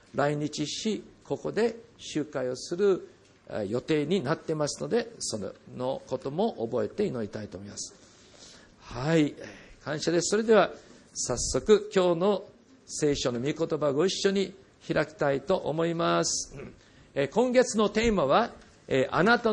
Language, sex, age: Japanese, male, 50-69